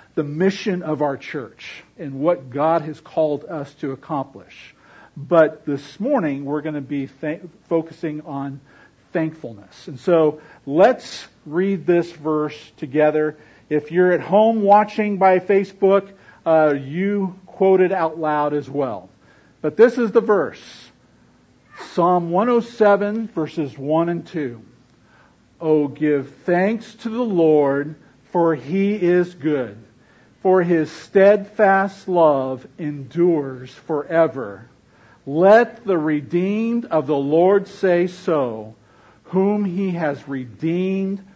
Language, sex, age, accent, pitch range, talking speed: English, male, 50-69, American, 145-190 Hz, 120 wpm